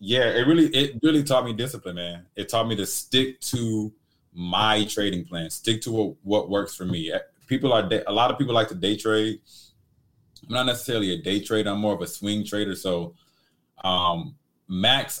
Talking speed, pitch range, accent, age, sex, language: 195 wpm, 90-110 Hz, American, 20-39, male, English